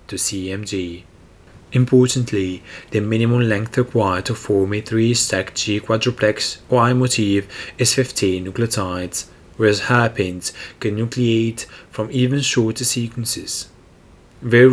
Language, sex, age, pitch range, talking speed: English, male, 30-49, 95-125 Hz, 105 wpm